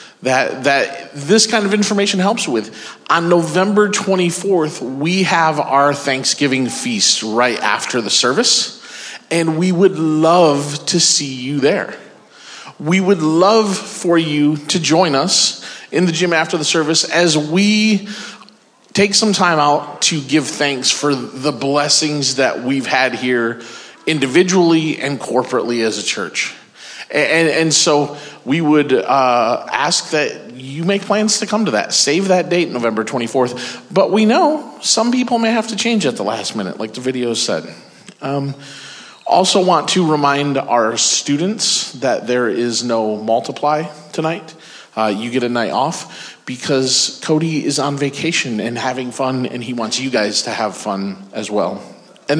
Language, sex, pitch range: English, male, 135-185 Hz